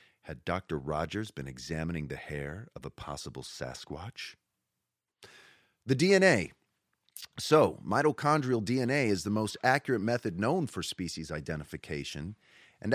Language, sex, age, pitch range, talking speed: English, male, 30-49, 85-120 Hz, 120 wpm